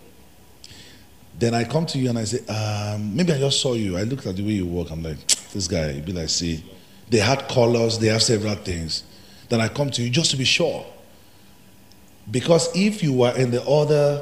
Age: 40-59